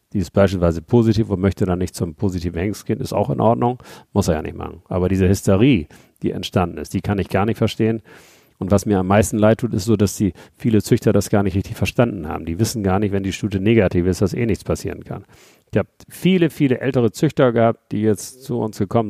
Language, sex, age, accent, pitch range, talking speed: German, male, 40-59, German, 95-115 Hz, 245 wpm